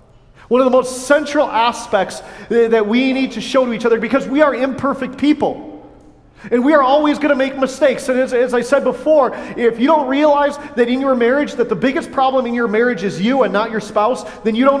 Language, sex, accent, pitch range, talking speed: English, male, American, 210-275 Hz, 230 wpm